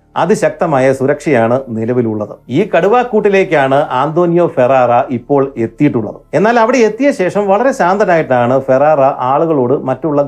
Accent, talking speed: native, 100 wpm